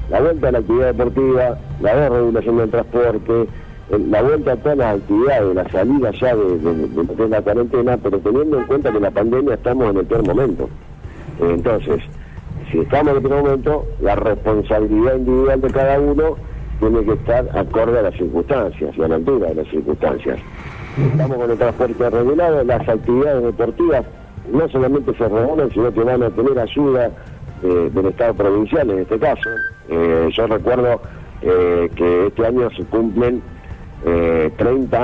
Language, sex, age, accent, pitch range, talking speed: Spanish, male, 50-69, Argentinian, 90-130 Hz, 170 wpm